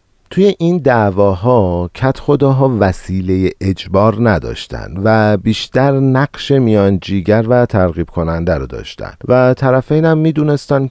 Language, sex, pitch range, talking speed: Persian, male, 95-120 Hz, 115 wpm